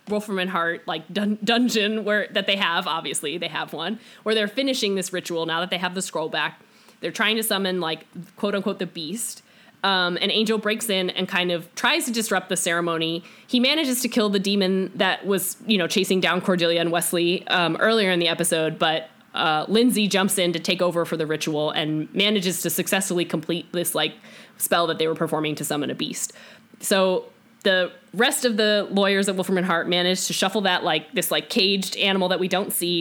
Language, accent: English, American